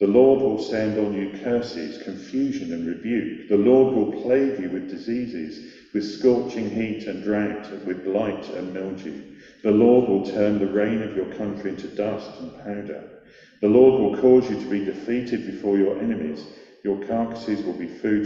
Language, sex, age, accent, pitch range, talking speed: English, male, 50-69, British, 100-130 Hz, 180 wpm